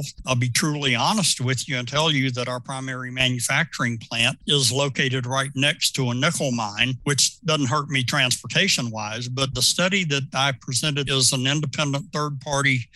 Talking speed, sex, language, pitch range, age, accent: 170 wpm, male, English, 130-150 Hz, 60-79, American